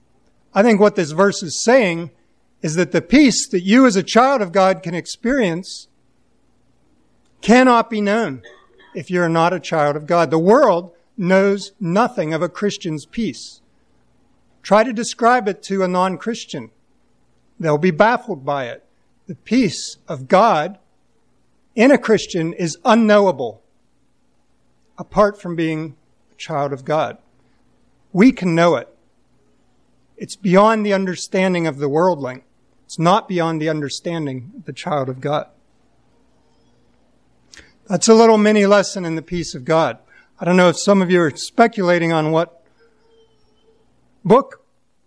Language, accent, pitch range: English, American, 160-210 Hz